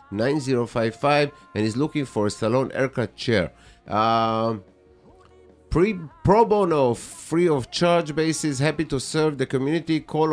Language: English